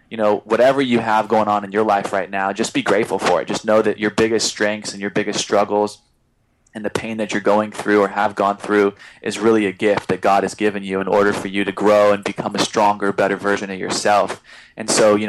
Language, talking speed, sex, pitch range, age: English, 250 wpm, male, 100-110 Hz, 20-39